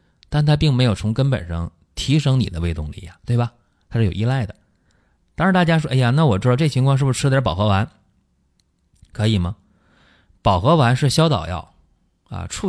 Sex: male